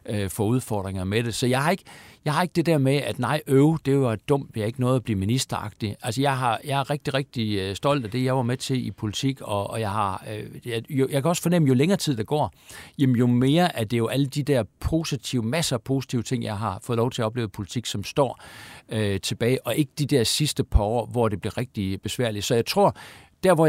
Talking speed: 260 wpm